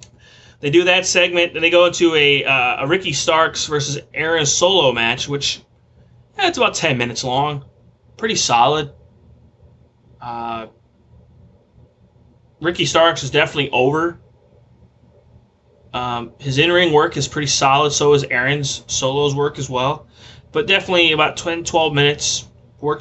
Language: English